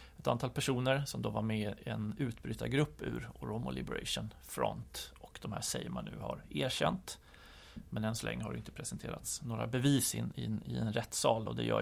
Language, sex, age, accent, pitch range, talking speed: Swedish, male, 30-49, native, 105-130 Hz, 215 wpm